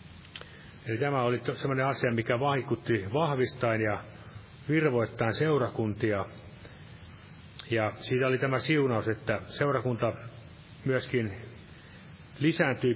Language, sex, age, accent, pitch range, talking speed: Finnish, male, 30-49, native, 115-140 Hz, 95 wpm